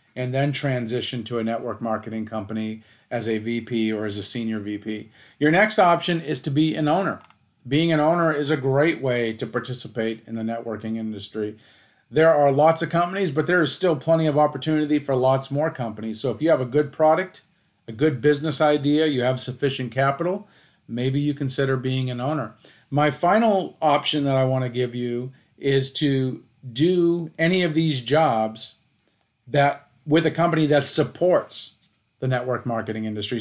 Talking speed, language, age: 180 wpm, English, 40-59